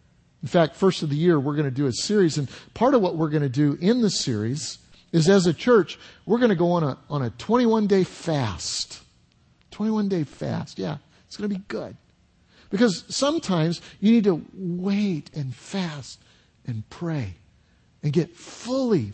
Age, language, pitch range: 50-69, English, 130-190 Hz